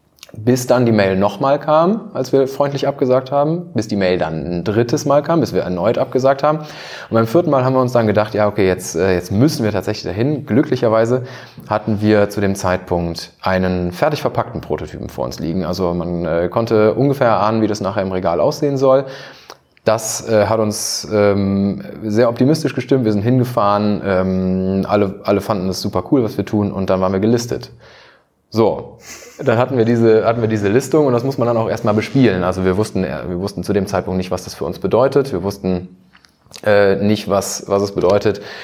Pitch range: 95-120 Hz